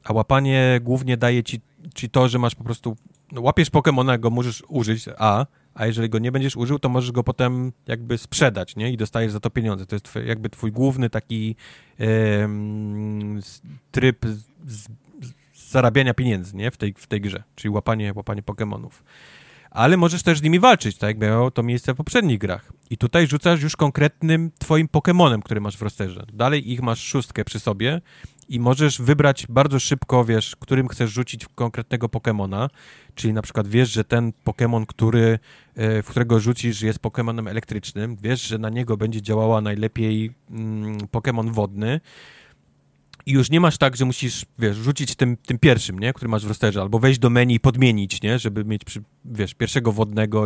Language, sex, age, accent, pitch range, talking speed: Polish, male, 30-49, native, 110-135 Hz, 185 wpm